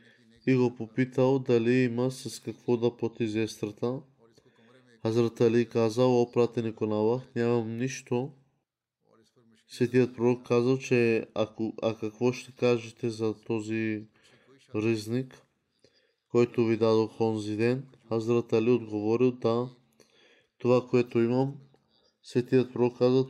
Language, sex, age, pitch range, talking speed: Bulgarian, male, 20-39, 110-125 Hz, 110 wpm